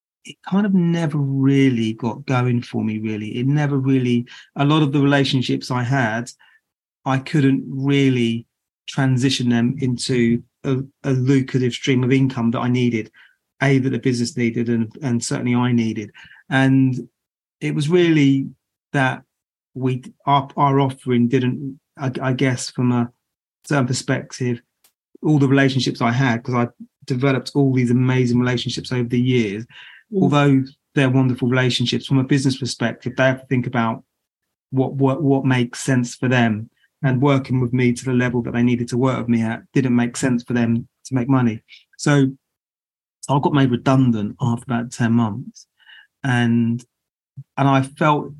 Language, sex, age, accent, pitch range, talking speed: English, male, 40-59, British, 120-135 Hz, 165 wpm